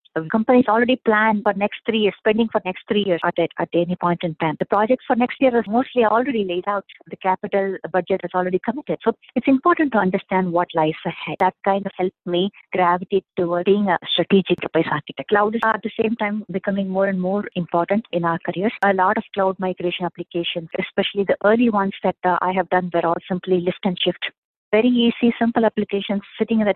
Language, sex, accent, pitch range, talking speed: English, female, Indian, 175-210 Hz, 215 wpm